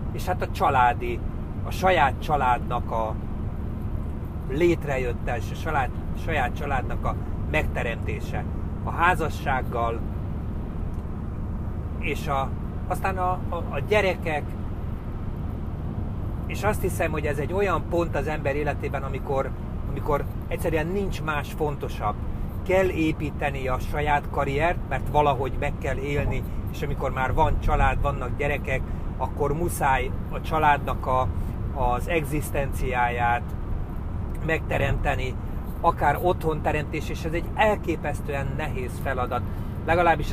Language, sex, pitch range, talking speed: Hungarian, male, 80-115 Hz, 110 wpm